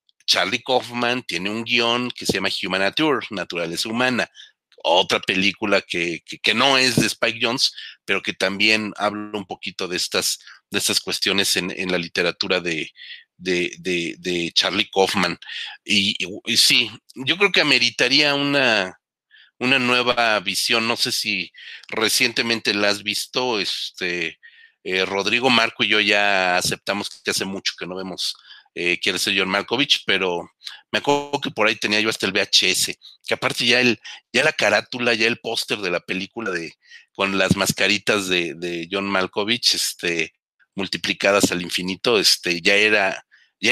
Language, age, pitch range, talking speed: Spanish, 40-59, 95-125 Hz, 165 wpm